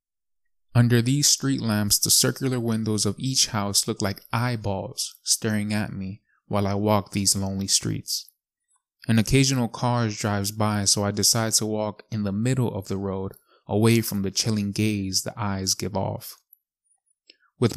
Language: English